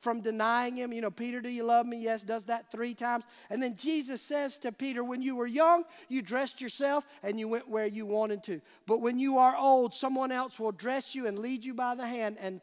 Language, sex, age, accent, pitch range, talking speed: English, male, 50-69, American, 215-265 Hz, 245 wpm